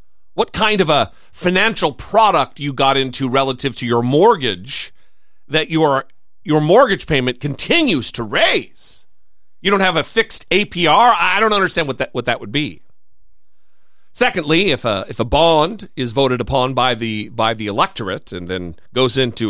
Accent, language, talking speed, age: American, English, 165 wpm, 40-59